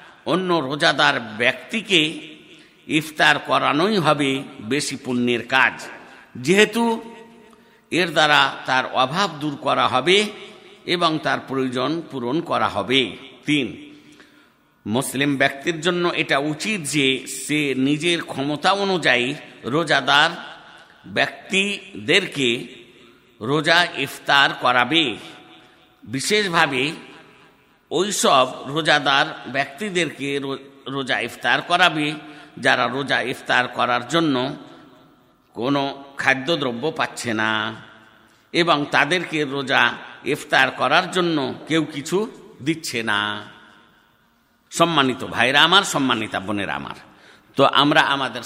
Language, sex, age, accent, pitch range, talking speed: Bengali, male, 50-69, native, 125-175 Hz, 85 wpm